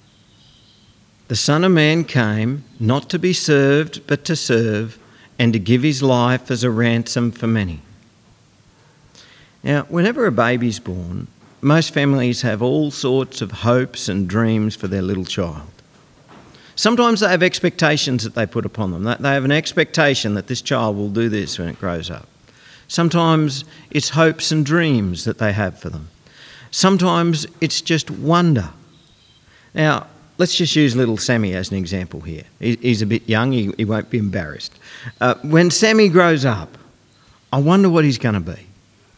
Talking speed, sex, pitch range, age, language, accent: 165 wpm, male, 105-160 Hz, 50-69, English, Australian